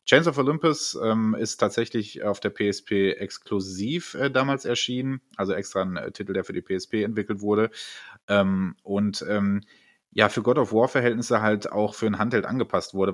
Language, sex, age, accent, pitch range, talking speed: German, male, 30-49, German, 95-115 Hz, 180 wpm